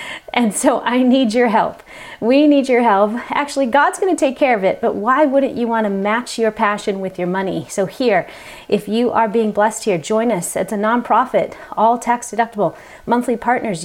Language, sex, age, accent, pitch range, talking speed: English, female, 40-59, American, 195-255 Hz, 200 wpm